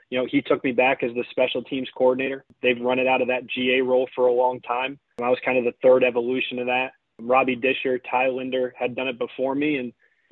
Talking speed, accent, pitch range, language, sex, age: 255 wpm, American, 125-145 Hz, English, male, 20-39